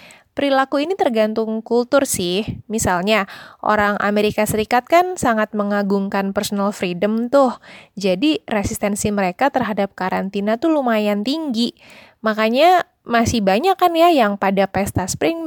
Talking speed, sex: 125 wpm, female